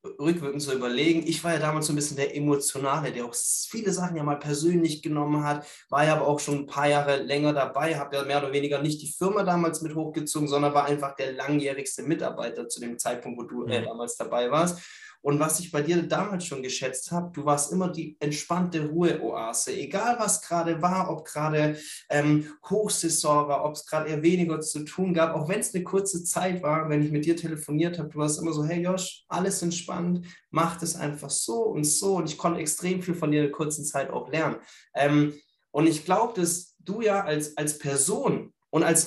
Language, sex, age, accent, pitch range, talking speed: German, male, 20-39, German, 145-175 Hz, 215 wpm